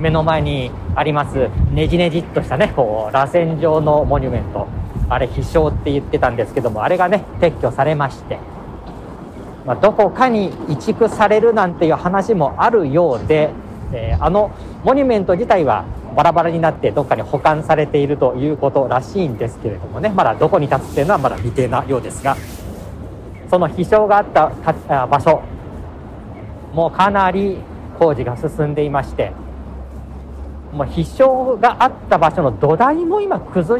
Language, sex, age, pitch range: Japanese, male, 40-59, 110-180 Hz